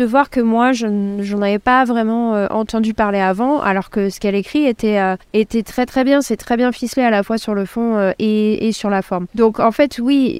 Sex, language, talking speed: female, French, 255 wpm